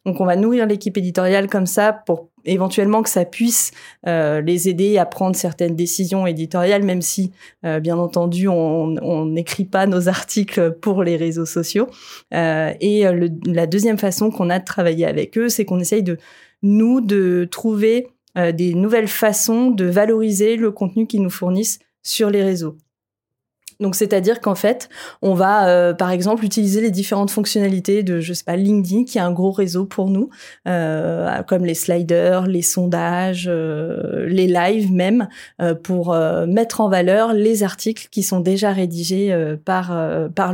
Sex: female